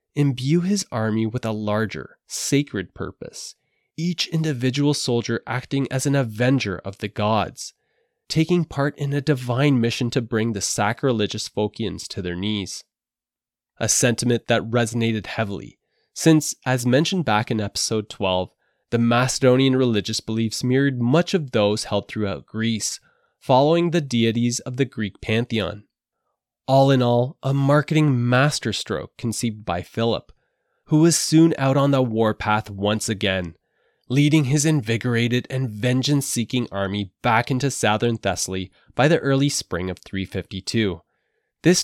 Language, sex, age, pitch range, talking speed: English, male, 20-39, 105-135 Hz, 140 wpm